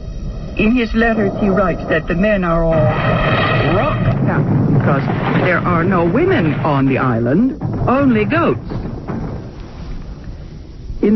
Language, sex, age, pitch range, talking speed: English, female, 60-79, 155-225 Hz, 125 wpm